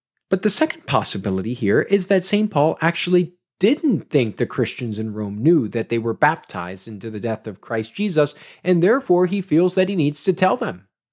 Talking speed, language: 200 wpm, English